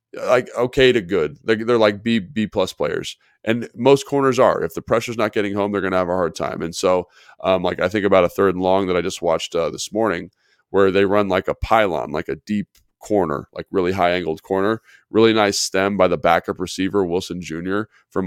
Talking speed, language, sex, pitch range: 230 wpm, English, male, 90-110 Hz